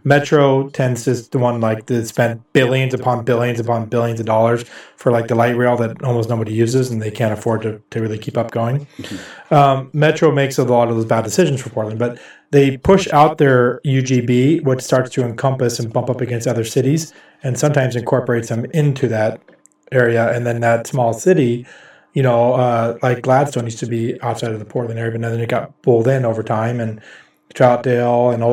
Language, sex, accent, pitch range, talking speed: English, male, American, 115-135 Hz, 205 wpm